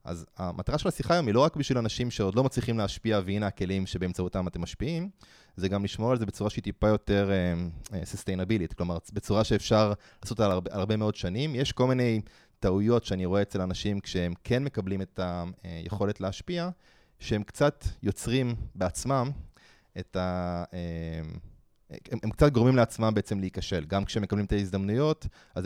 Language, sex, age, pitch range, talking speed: Hebrew, male, 20-39, 95-115 Hz, 170 wpm